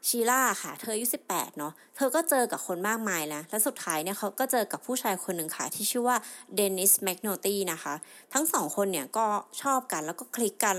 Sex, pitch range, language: female, 180-245 Hz, Thai